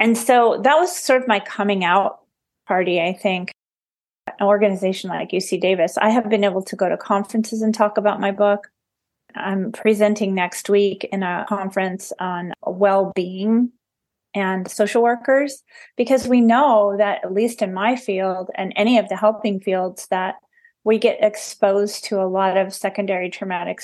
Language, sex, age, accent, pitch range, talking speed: English, female, 30-49, American, 190-220 Hz, 170 wpm